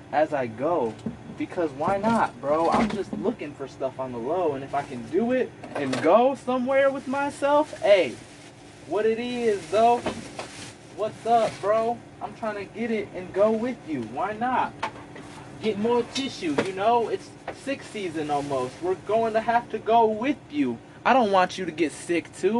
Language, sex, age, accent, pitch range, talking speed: English, male, 20-39, American, 185-255 Hz, 185 wpm